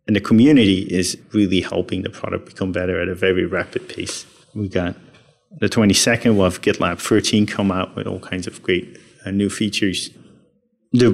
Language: English